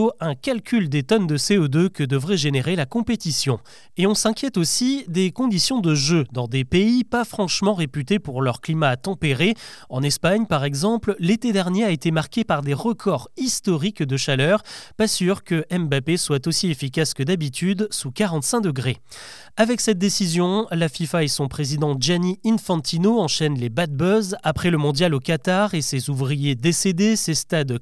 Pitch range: 145-205 Hz